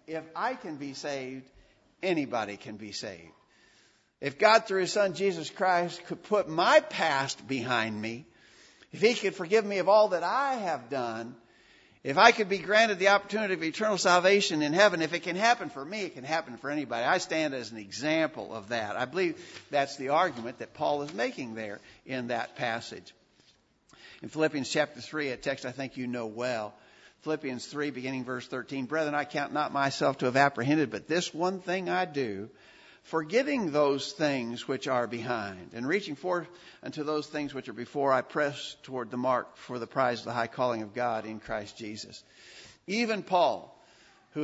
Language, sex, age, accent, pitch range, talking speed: English, male, 60-79, American, 130-185 Hz, 190 wpm